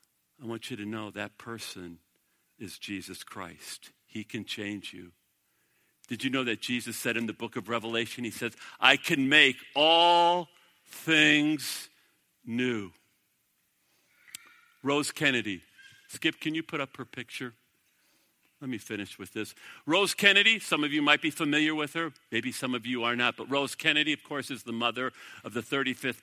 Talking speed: 170 wpm